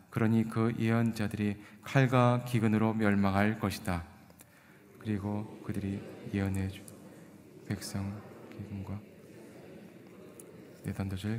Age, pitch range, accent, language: 20-39, 100-115 Hz, native, Korean